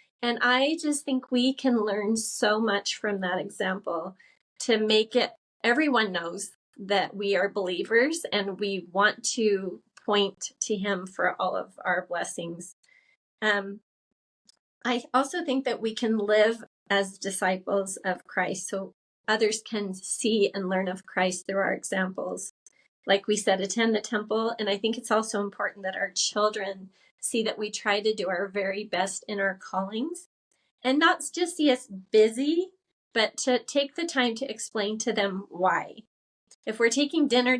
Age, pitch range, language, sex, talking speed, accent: 30-49, 195-245 Hz, English, female, 165 wpm, American